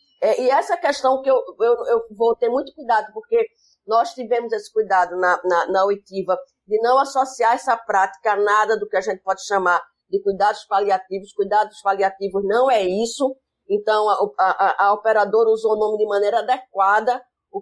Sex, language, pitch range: female, Portuguese, 205-270 Hz